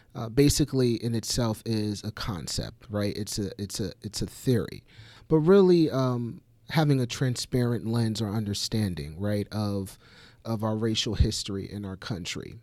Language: English